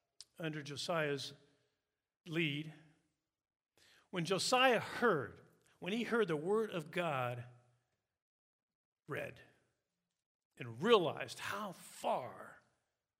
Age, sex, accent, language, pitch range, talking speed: 50-69, male, American, English, 145-190 Hz, 80 wpm